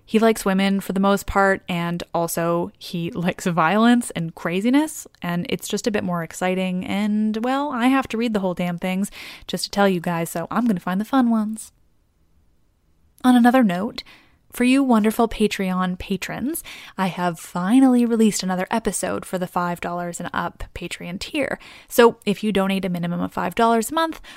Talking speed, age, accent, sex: 180 wpm, 10-29, American, female